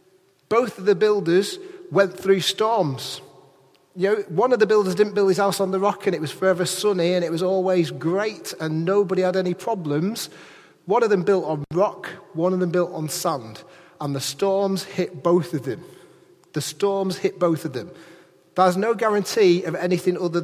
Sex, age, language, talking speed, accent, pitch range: male, 30-49, English, 195 wpm, British, 160-195 Hz